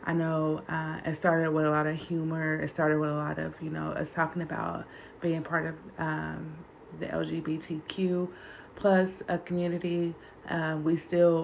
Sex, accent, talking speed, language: female, American, 175 wpm, English